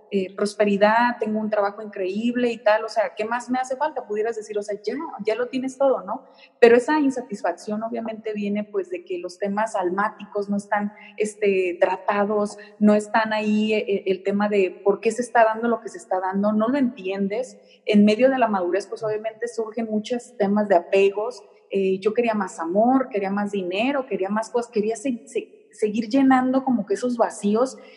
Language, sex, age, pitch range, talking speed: Spanish, female, 30-49, 200-245 Hz, 195 wpm